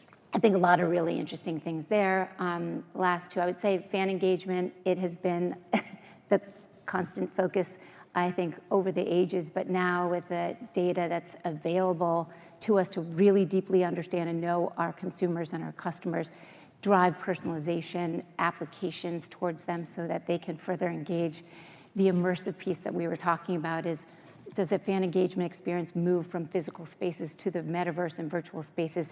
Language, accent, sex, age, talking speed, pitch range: English, American, female, 40-59, 170 wpm, 170-185 Hz